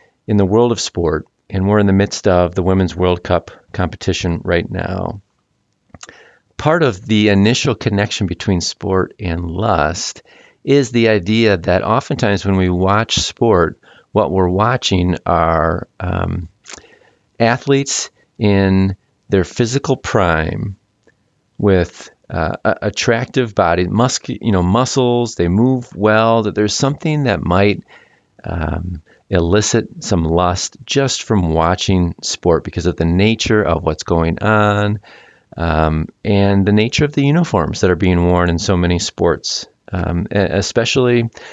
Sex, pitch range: male, 90-115 Hz